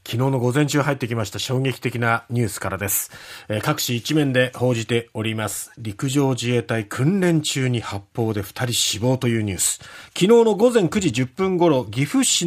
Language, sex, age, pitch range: Japanese, male, 40-59, 125-190 Hz